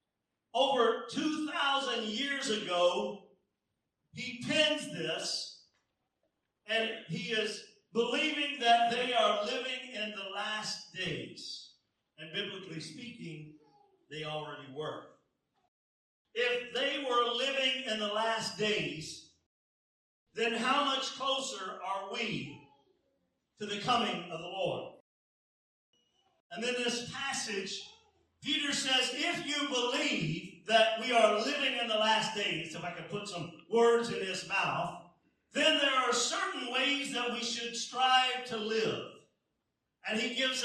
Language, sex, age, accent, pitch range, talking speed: English, male, 50-69, American, 175-250 Hz, 125 wpm